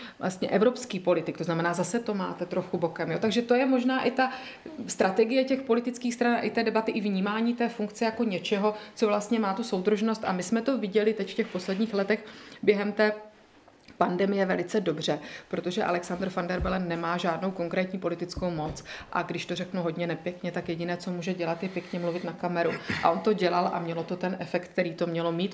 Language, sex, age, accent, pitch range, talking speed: Czech, female, 30-49, native, 175-205 Hz, 210 wpm